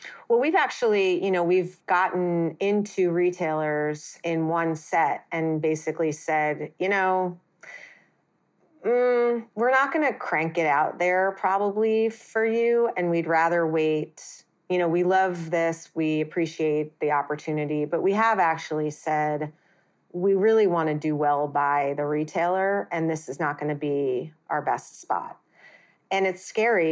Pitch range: 155-190 Hz